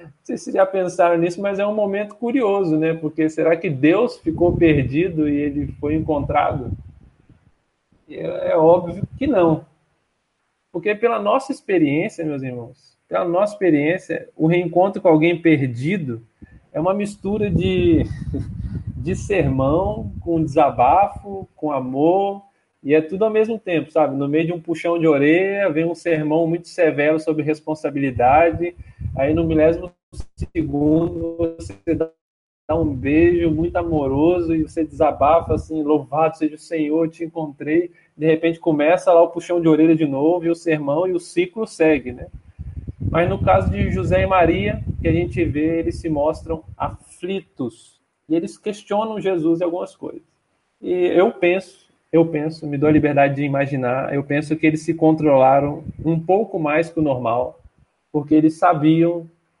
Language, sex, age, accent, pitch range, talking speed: Portuguese, male, 20-39, Brazilian, 150-175 Hz, 160 wpm